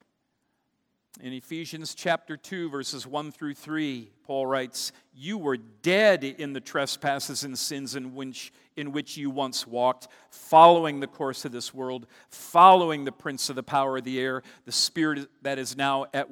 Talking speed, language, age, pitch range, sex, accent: 165 wpm, English, 50-69, 140-215 Hz, male, American